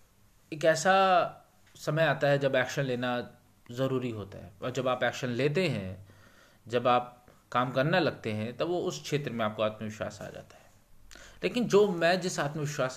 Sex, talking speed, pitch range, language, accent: male, 175 wpm, 105-145 Hz, Hindi, native